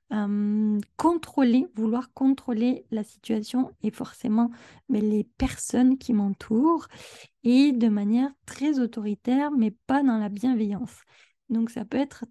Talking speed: 130 wpm